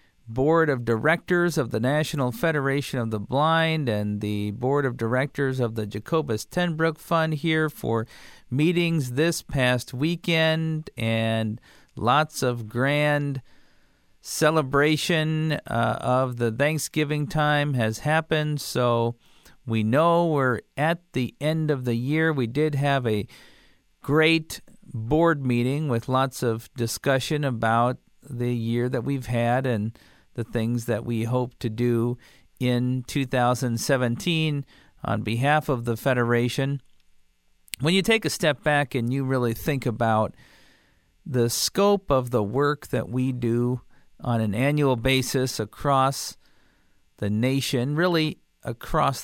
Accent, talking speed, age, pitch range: American, 130 wpm, 50-69, 115-150 Hz